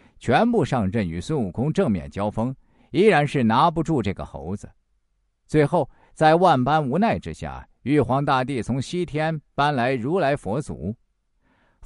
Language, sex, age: Chinese, male, 50-69